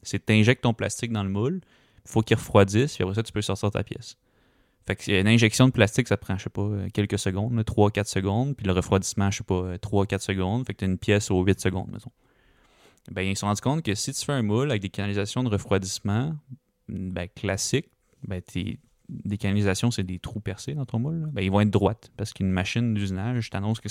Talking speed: 245 wpm